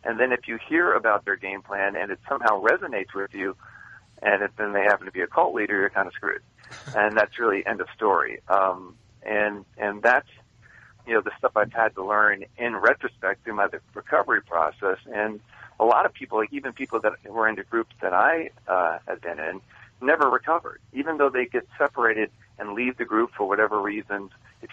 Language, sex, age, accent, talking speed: English, male, 50-69, American, 205 wpm